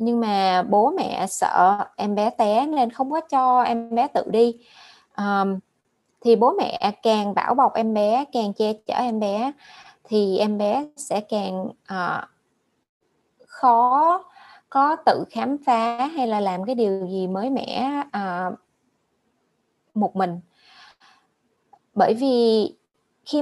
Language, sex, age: Vietnamese, female, 20-39